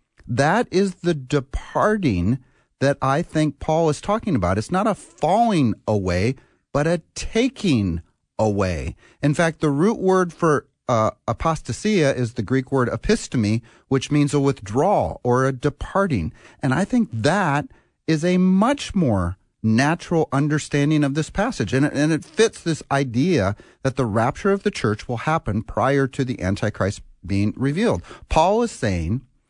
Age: 40-59